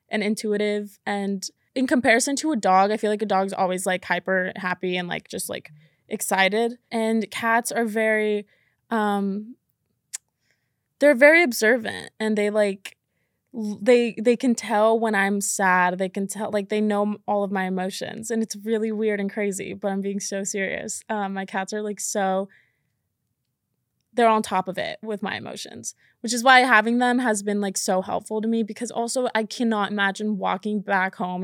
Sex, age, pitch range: female, 20-39, 195-225 Hz